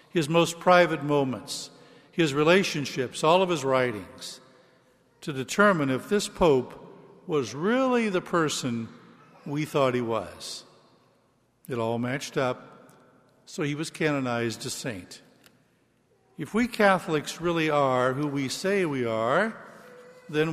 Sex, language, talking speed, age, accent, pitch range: male, English, 130 wpm, 60-79, American, 130-180 Hz